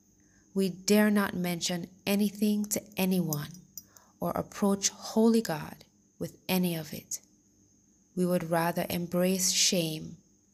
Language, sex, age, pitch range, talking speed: English, female, 20-39, 150-195 Hz, 115 wpm